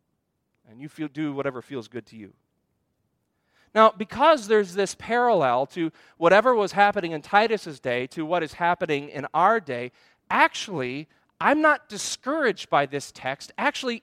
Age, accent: 40-59, American